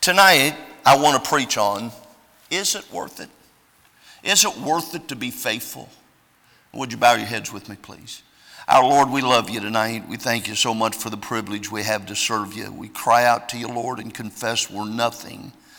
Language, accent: English, American